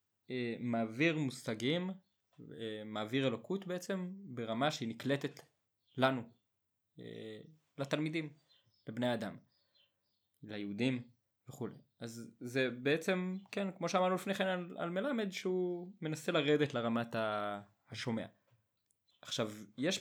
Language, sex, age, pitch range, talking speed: Hebrew, male, 20-39, 115-155 Hz, 105 wpm